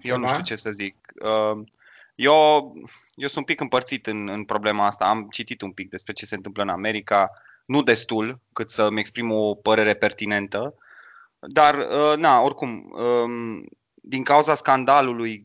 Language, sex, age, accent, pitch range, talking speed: Romanian, male, 20-39, native, 105-125 Hz, 155 wpm